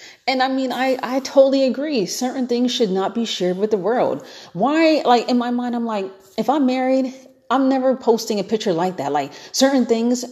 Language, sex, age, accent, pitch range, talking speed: English, female, 30-49, American, 155-235 Hz, 210 wpm